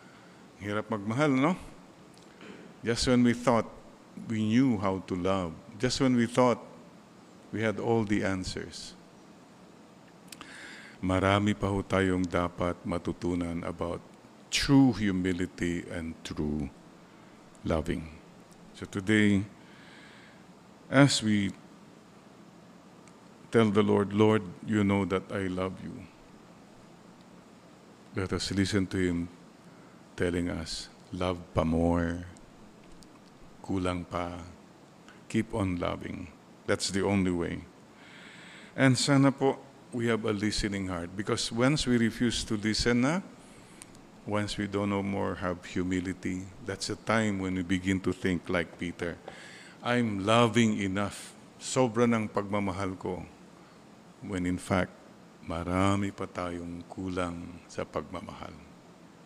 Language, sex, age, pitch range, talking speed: English, male, 50-69, 90-110 Hz, 115 wpm